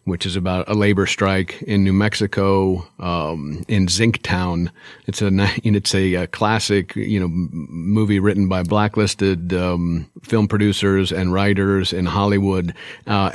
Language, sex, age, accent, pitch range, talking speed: English, male, 50-69, American, 95-105 Hz, 145 wpm